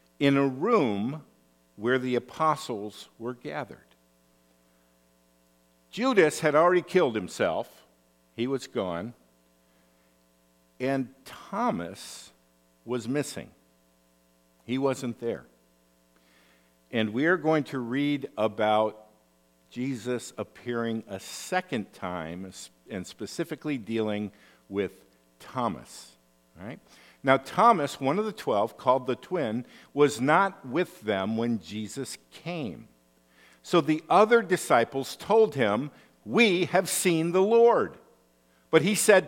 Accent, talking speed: American, 110 wpm